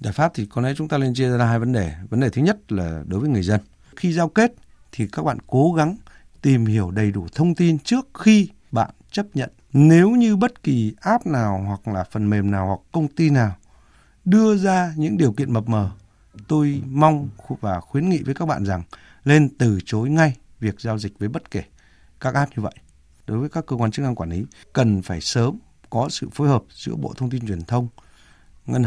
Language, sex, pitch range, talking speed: Vietnamese, male, 100-145 Hz, 225 wpm